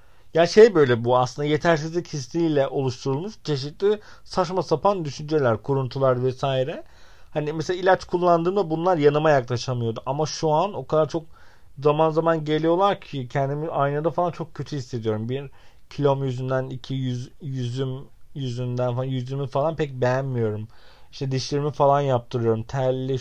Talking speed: 140 wpm